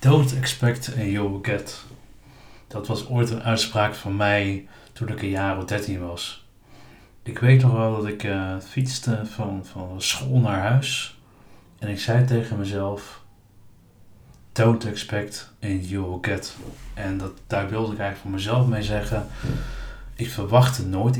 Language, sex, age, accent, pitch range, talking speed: Dutch, male, 40-59, Dutch, 105-125 Hz, 160 wpm